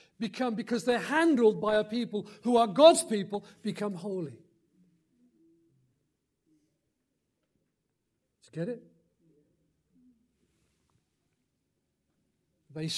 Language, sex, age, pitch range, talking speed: English, male, 50-69, 150-195 Hz, 85 wpm